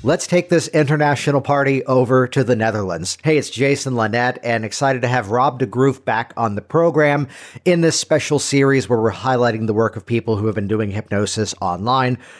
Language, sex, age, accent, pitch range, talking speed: English, male, 50-69, American, 110-145 Hz, 195 wpm